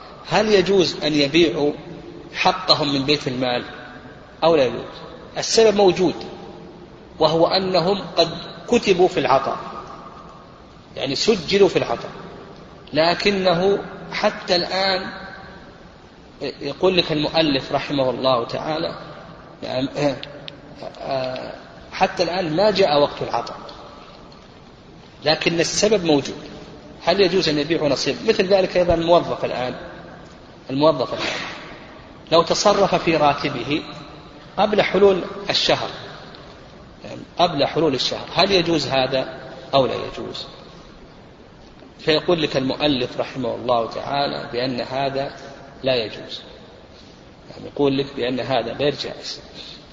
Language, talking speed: Arabic, 105 wpm